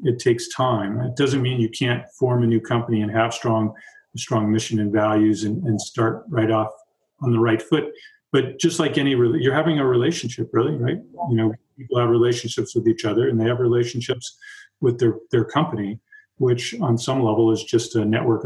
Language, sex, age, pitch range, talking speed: English, male, 40-59, 110-130 Hz, 200 wpm